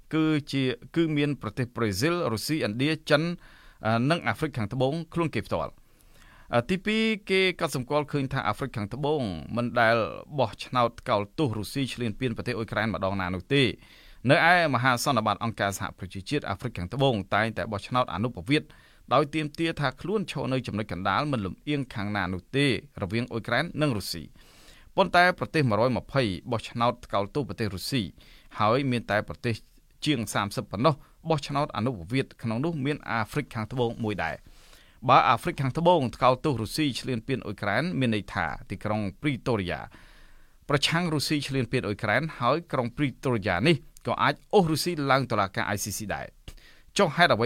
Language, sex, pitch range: English, male, 105-145 Hz